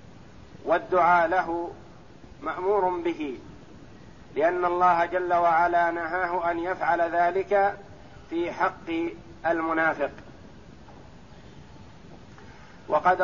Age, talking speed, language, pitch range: 50-69, 75 wpm, Arabic, 165-185 Hz